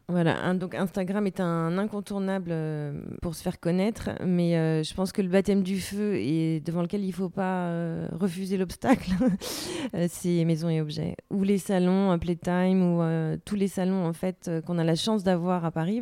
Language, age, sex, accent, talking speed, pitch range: French, 30-49, female, French, 200 wpm, 170-200 Hz